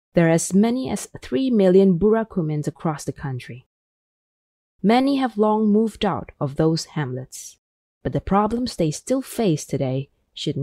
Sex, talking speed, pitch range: female, 150 wpm, 150-200 Hz